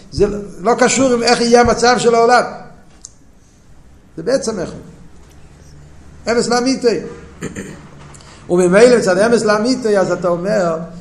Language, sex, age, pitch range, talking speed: Hebrew, male, 50-69, 175-230 Hz, 115 wpm